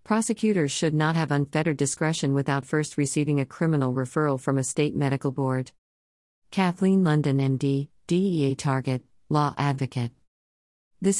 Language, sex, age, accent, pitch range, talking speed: English, female, 50-69, American, 135-160 Hz, 135 wpm